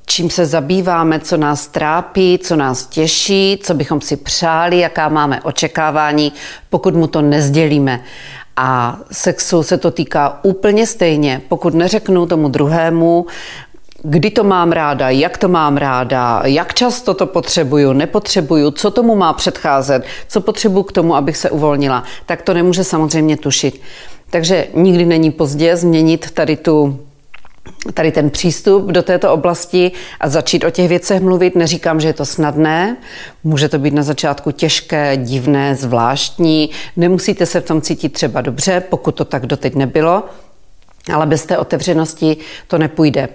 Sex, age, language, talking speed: female, 40-59, Czech, 150 wpm